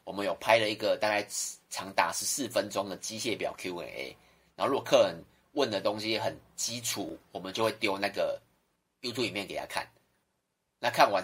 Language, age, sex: Chinese, 30-49, male